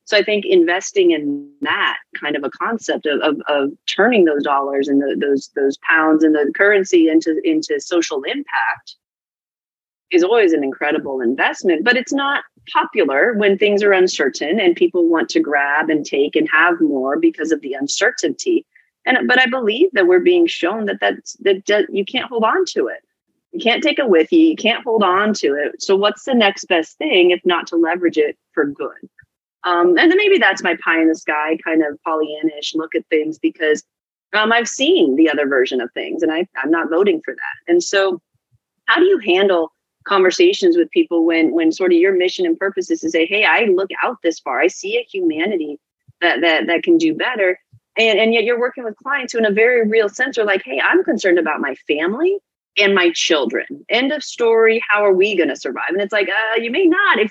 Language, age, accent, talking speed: English, 30-49, American, 215 wpm